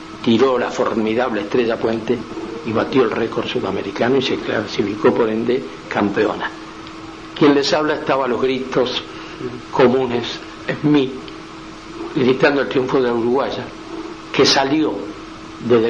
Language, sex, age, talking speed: Spanish, male, 60-79, 130 wpm